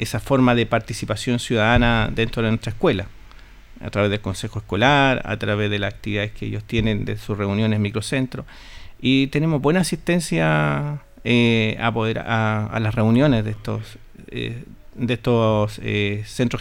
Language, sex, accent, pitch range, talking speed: Spanish, male, Argentinian, 110-130 Hz, 150 wpm